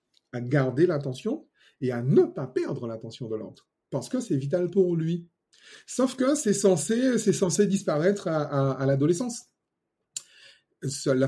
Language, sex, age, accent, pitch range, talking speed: French, male, 30-49, French, 125-170 Hz, 155 wpm